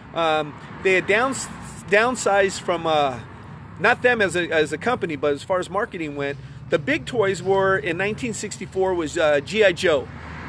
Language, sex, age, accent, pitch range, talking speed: English, male, 40-59, American, 150-200 Hz, 170 wpm